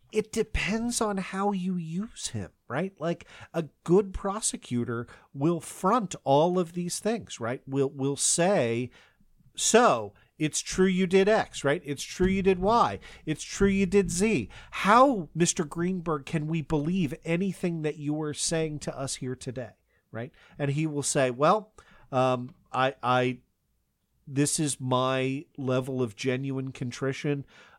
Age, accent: 40-59, American